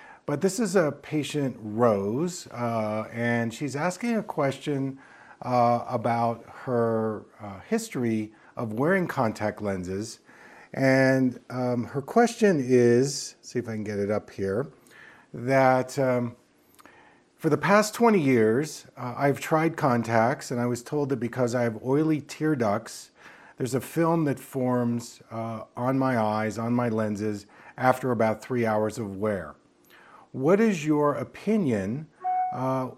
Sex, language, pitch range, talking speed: male, English, 115-155 Hz, 145 wpm